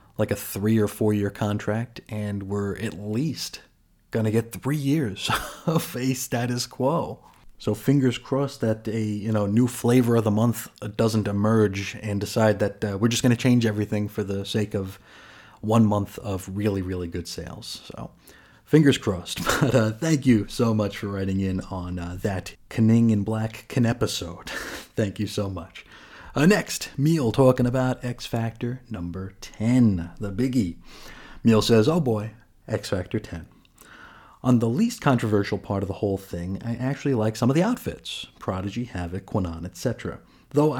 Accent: American